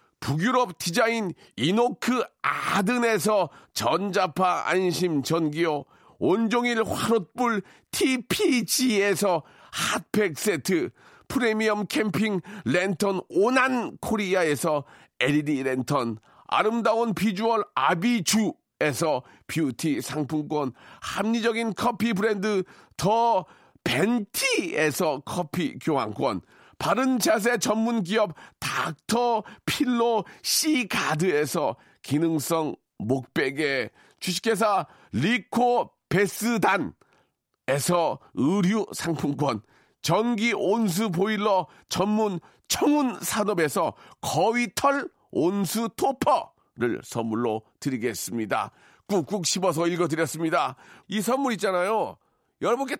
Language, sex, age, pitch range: Korean, male, 40-59, 170-235 Hz